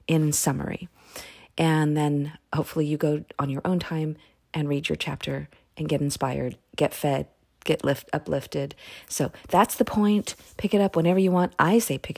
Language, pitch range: English, 150-195 Hz